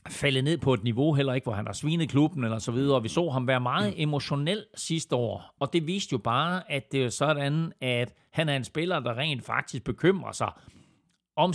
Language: Danish